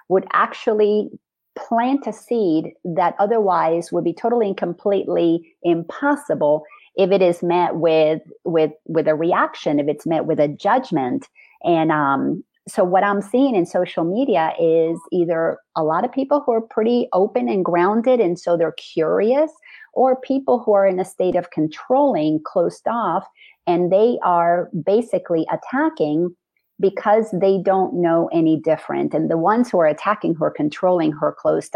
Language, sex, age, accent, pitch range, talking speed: English, female, 40-59, American, 160-220 Hz, 160 wpm